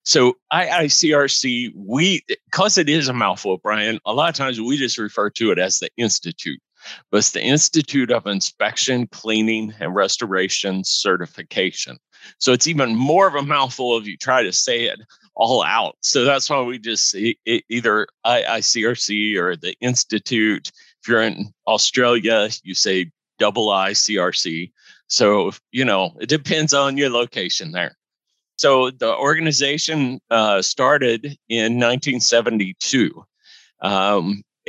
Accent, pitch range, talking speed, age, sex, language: American, 105-135 Hz, 140 wpm, 40-59, male, English